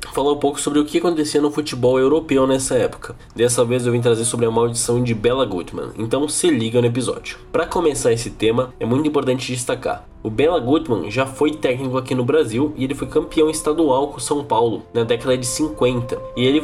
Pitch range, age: 115-145 Hz, 10-29